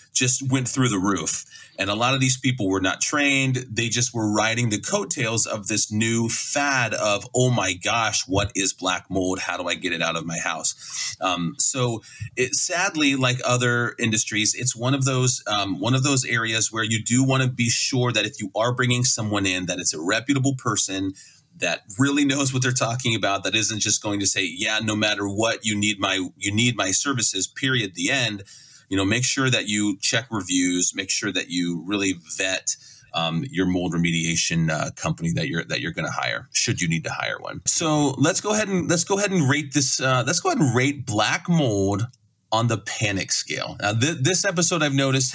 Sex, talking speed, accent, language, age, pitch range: male, 220 wpm, American, English, 30-49, 105-135 Hz